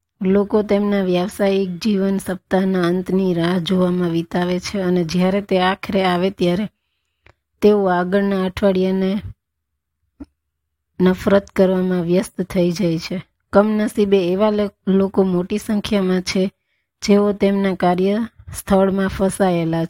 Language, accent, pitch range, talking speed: Gujarati, native, 185-200 Hz, 105 wpm